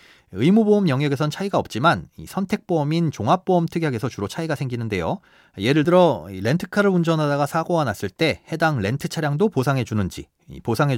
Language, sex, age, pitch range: Korean, male, 30-49, 115-170 Hz